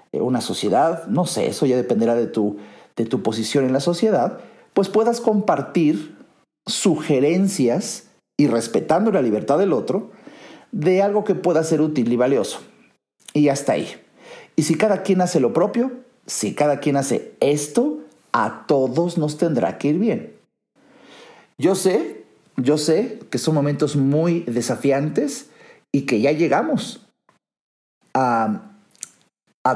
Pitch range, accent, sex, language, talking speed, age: 135-195 Hz, Mexican, male, Spanish, 140 wpm, 50-69